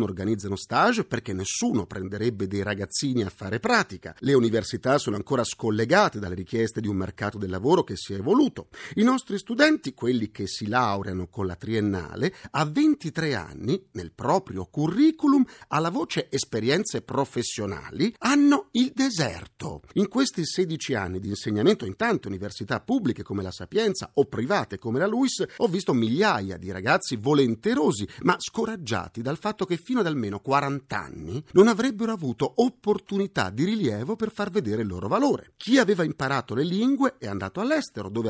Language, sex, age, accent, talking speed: Italian, male, 50-69, native, 165 wpm